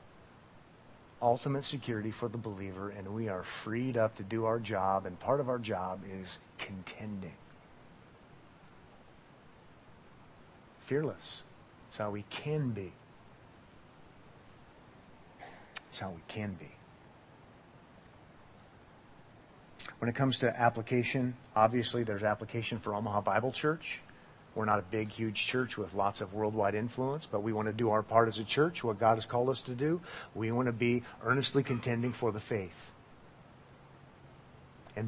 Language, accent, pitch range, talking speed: English, American, 105-130 Hz, 140 wpm